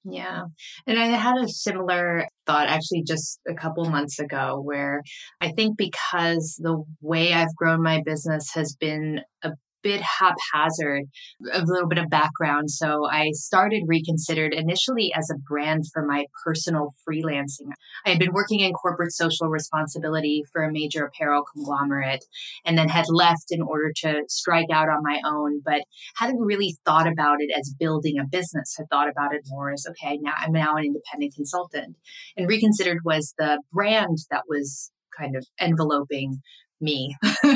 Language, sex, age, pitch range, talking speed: English, female, 20-39, 150-180 Hz, 165 wpm